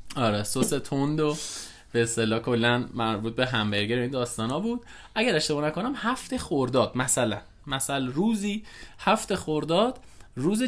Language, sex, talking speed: Persian, male, 135 wpm